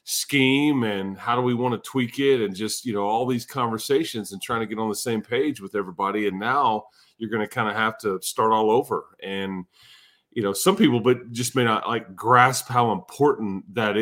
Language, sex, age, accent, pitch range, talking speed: English, male, 30-49, American, 105-130 Hz, 225 wpm